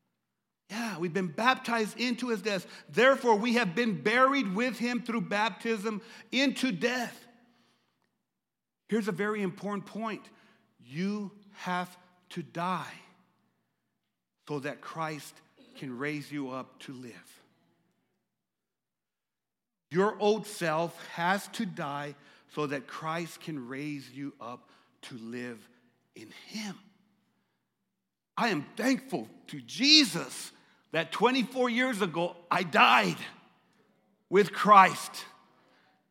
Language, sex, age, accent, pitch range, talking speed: English, male, 50-69, American, 165-230 Hz, 110 wpm